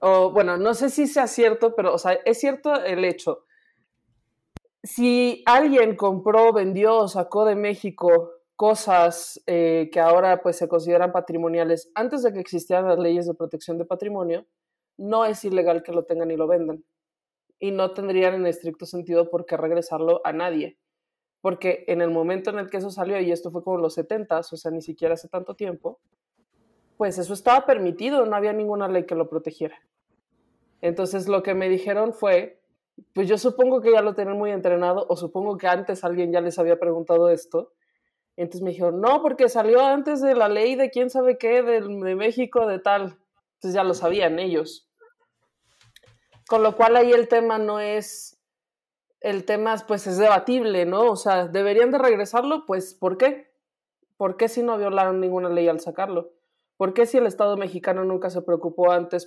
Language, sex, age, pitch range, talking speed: Spanish, male, 20-39, 175-225 Hz, 180 wpm